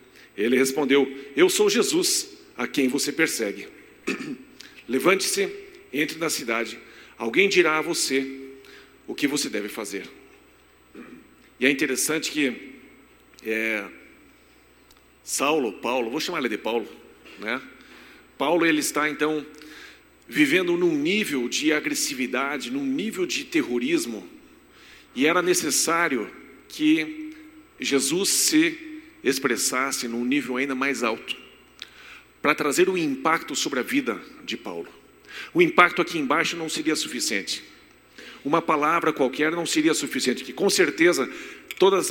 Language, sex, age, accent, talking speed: Portuguese, male, 50-69, Brazilian, 125 wpm